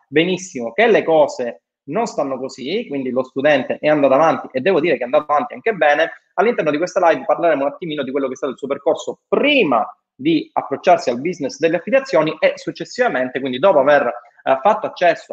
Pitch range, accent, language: 135-205 Hz, native, Italian